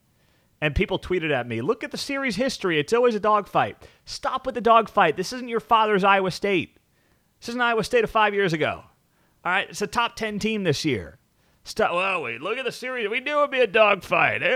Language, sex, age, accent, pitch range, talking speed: English, male, 30-49, American, 130-210 Hz, 230 wpm